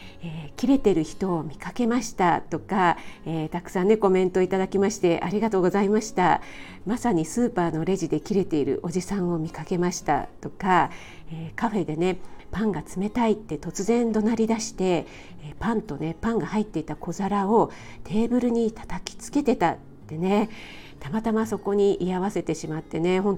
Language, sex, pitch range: Japanese, female, 175-220 Hz